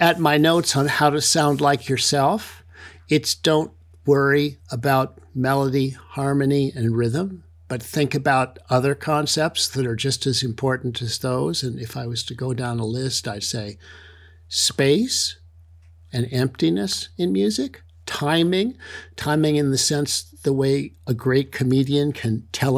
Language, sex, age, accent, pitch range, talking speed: English, male, 60-79, American, 100-150 Hz, 150 wpm